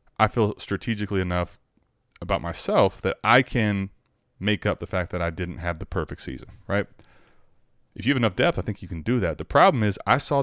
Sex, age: male, 20-39